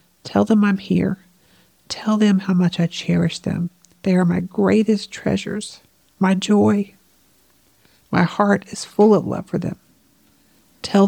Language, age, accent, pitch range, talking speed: English, 50-69, American, 180-205 Hz, 145 wpm